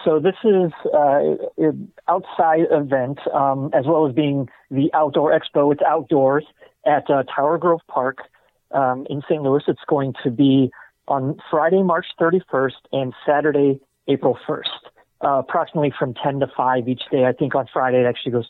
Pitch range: 135-160 Hz